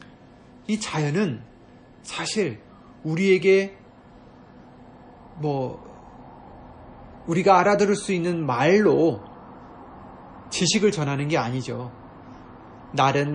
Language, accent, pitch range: Korean, native, 130-195 Hz